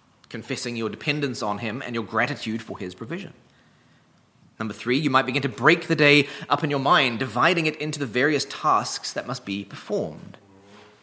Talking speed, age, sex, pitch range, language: 185 wpm, 30-49, male, 115-145 Hz, English